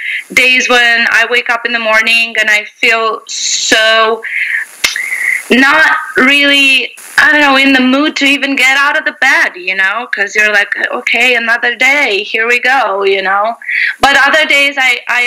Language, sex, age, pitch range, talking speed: English, female, 20-39, 220-270 Hz, 175 wpm